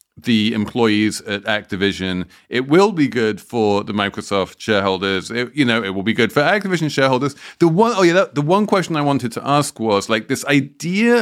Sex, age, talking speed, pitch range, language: male, 30-49, 195 wpm, 100-130 Hz, English